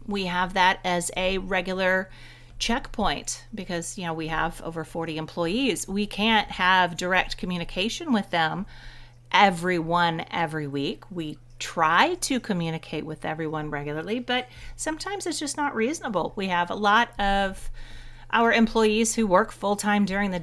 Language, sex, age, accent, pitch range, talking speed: English, female, 40-59, American, 170-215 Hz, 155 wpm